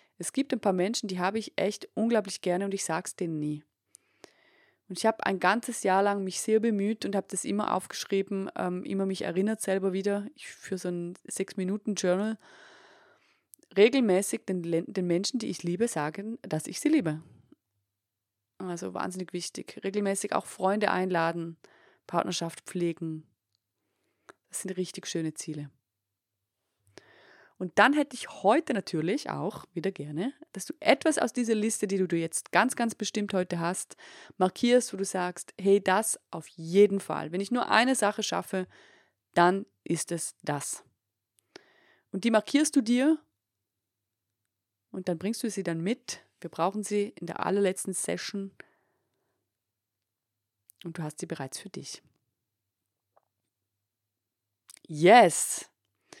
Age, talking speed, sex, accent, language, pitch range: 30-49, 145 wpm, female, German, German, 150-205 Hz